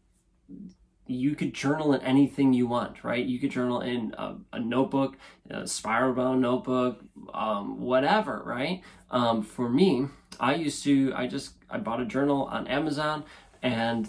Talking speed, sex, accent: 160 wpm, male, American